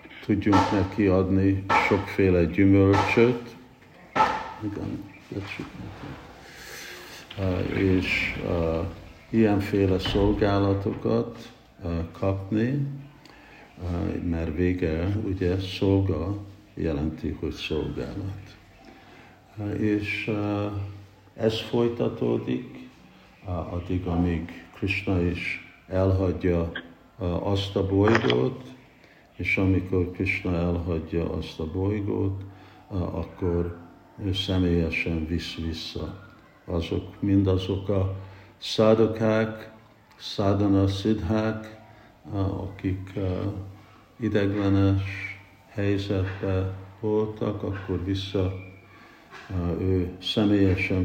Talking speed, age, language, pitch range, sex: 60 wpm, 60-79, Hungarian, 90-105 Hz, male